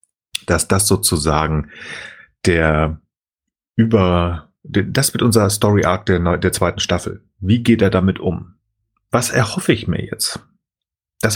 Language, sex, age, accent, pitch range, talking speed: German, male, 30-49, German, 95-115 Hz, 125 wpm